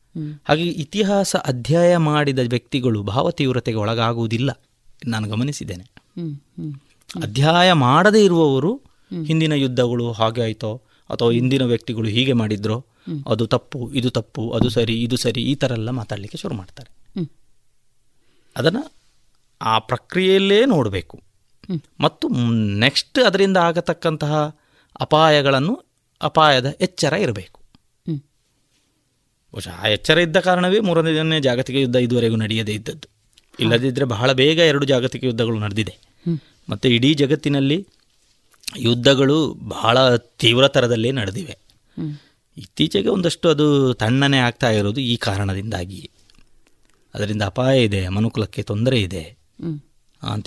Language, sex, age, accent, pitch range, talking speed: Kannada, male, 30-49, native, 110-150 Hz, 105 wpm